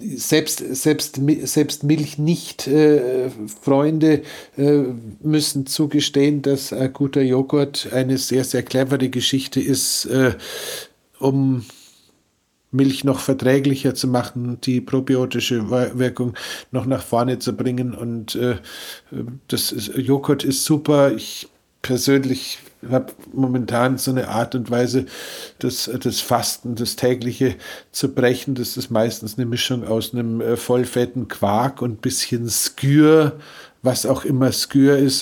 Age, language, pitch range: 50-69, German, 115-135 Hz